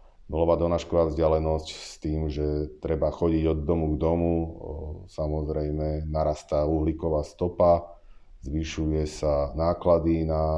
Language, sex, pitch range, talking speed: Slovak, male, 75-85 Hz, 115 wpm